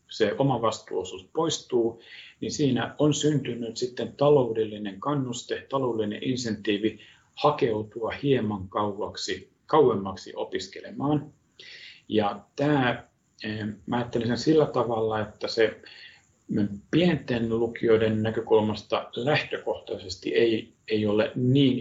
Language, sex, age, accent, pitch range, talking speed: Finnish, male, 50-69, native, 110-145 Hz, 90 wpm